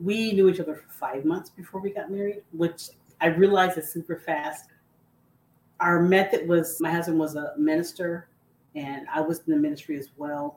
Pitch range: 140-175 Hz